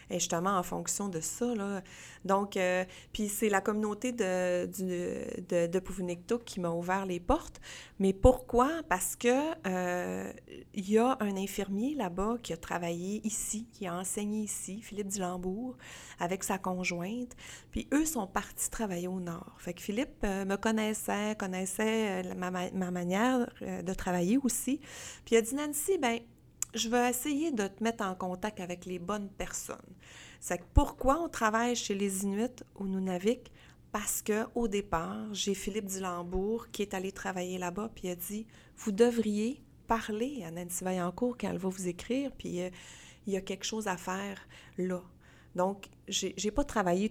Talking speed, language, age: 175 wpm, French, 30-49